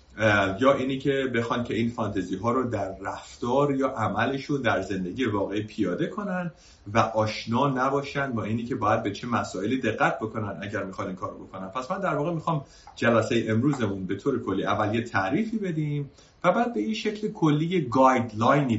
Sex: male